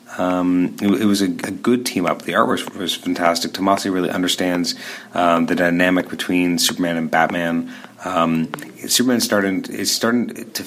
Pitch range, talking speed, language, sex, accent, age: 90-100 Hz, 165 wpm, English, male, American, 30-49